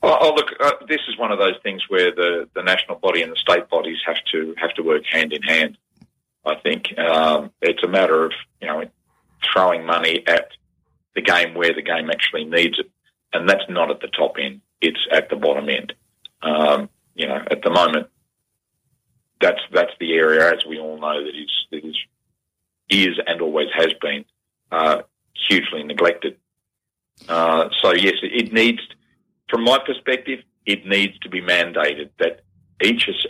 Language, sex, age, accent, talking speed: English, male, 40-59, Australian, 180 wpm